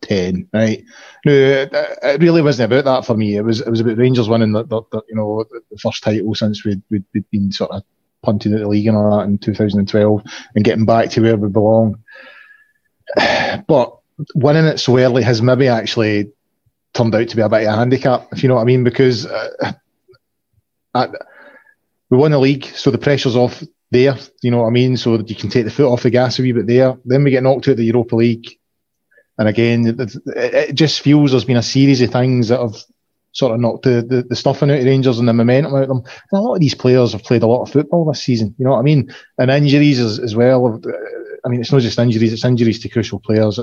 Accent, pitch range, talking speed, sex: British, 110-130 Hz, 240 wpm, male